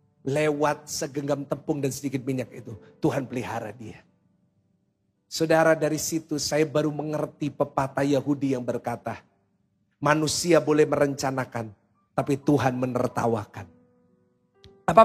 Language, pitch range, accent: Indonesian, 125-160 Hz, native